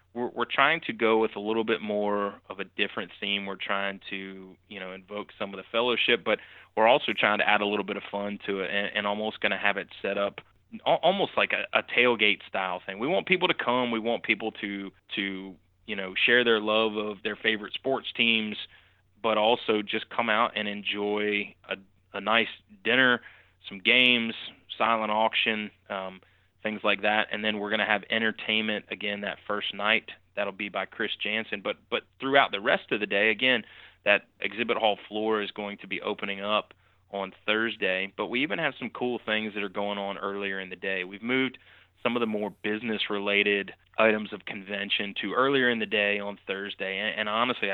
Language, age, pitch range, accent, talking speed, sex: English, 20-39, 100-110 Hz, American, 205 wpm, male